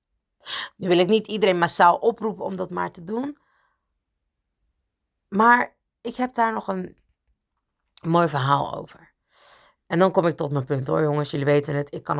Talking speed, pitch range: 170 wpm, 140-195 Hz